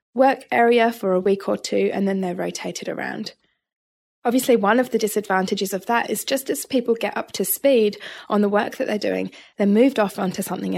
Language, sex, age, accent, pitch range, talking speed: English, female, 10-29, British, 190-230 Hz, 210 wpm